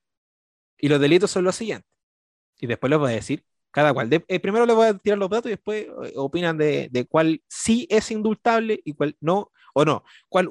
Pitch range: 145-200 Hz